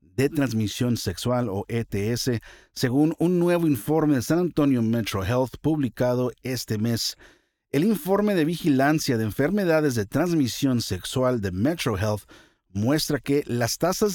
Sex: male